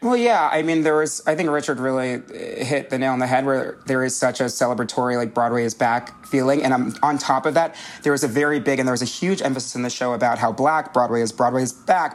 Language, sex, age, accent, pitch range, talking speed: English, male, 30-49, American, 125-155 Hz, 270 wpm